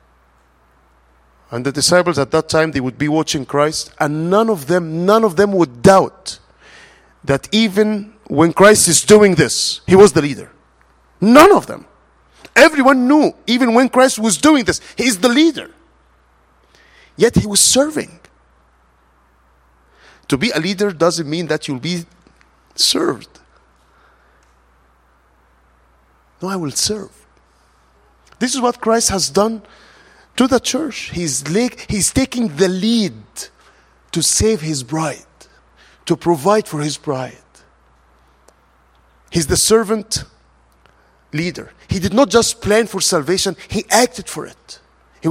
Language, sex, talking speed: English, male, 140 wpm